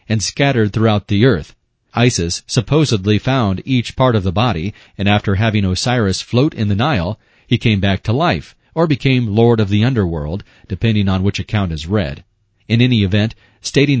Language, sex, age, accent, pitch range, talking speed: English, male, 40-59, American, 100-125 Hz, 180 wpm